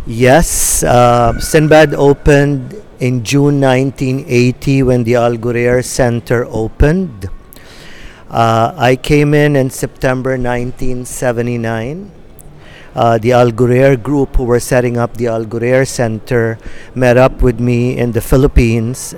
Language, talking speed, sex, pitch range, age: English, 115 wpm, male, 120-140 Hz, 50-69